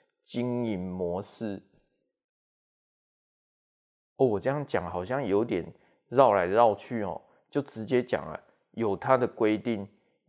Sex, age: male, 20-39